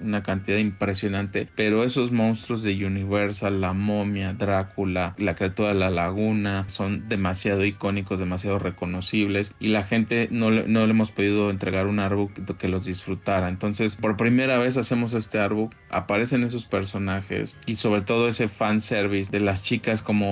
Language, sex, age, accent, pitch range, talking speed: Spanish, male, 20-39, Mexican, 95-110 Hz, 165 wpm